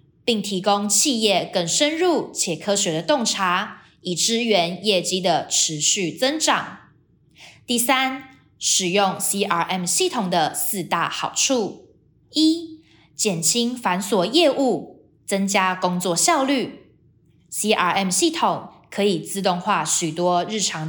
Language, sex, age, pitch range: Chinese, female, 20-39, 175-240 Hz